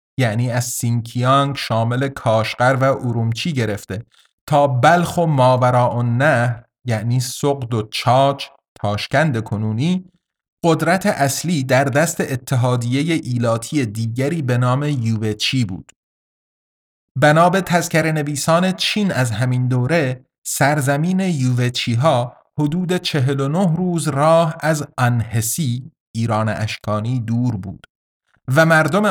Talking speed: 105 wpm